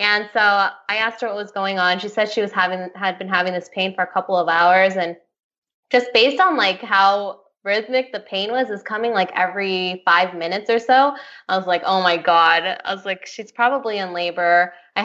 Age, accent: 10-29, American